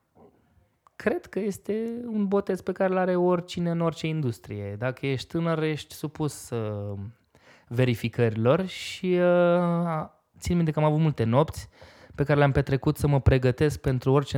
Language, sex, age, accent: Romanian, male, 20-39, native